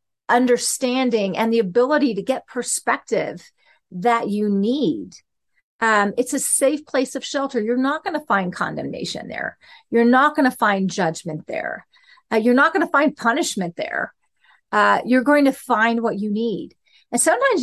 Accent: American